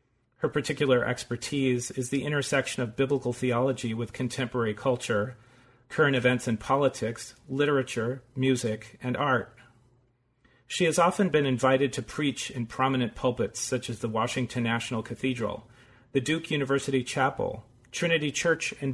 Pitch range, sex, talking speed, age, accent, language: 120-135 Hz, male, 135 wpm, 40-59, American, English